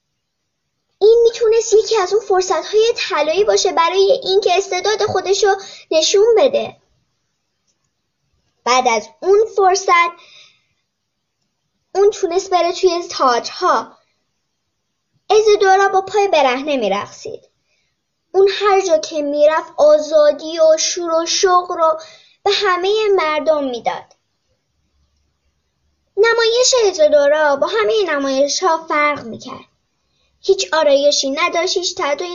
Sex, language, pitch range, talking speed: male, Persian, 280-390 Hz, 105 wpm